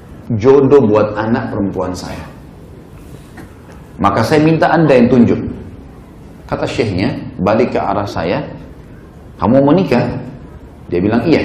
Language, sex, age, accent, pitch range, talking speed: Indonesian, male, 30-49, native, 110-175 Hz, 120 wpm